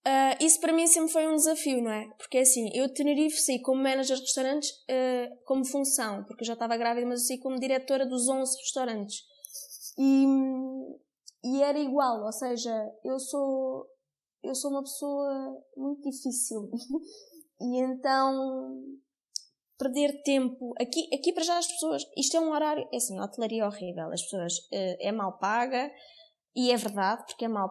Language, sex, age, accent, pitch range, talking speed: Portuguese, female, 20-39, Brazilian, 225-290 Hz, 180 wpm